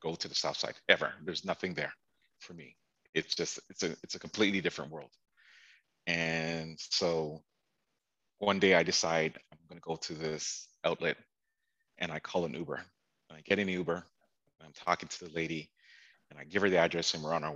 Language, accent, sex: English, American, male